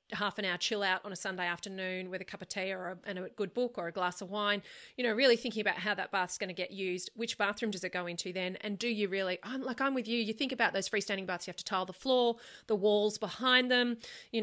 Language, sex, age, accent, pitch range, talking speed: English, female, 30-49, Australian, 185-225 Hz, 290 wpm